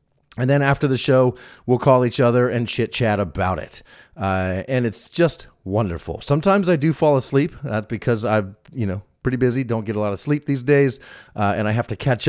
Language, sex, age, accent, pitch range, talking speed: English, male, 30-49, American, 105-140 Hz, 225 wpm